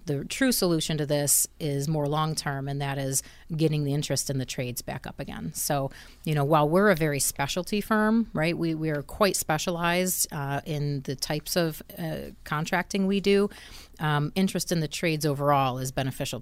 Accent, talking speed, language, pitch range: American, 195 wpm, English, 145-175 Hz